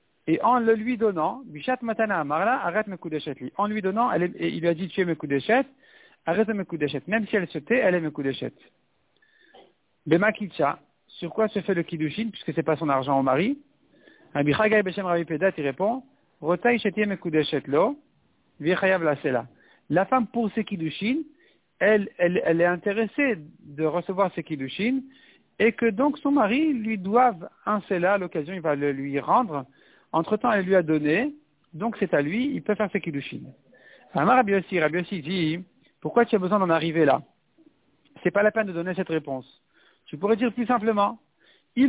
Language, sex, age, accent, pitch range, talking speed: French, male, 50-69, French, 160-225 Hz, 175 wpm